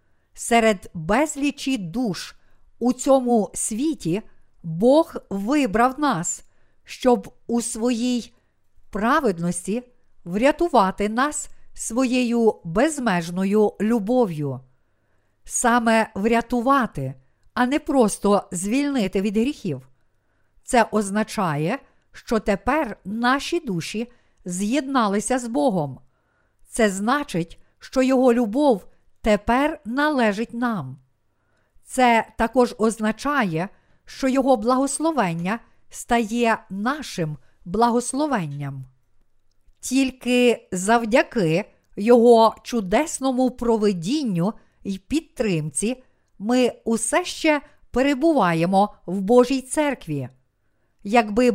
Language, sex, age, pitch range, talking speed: Ukrainian, female, 50-69, 185-255 Hz, 80 wpm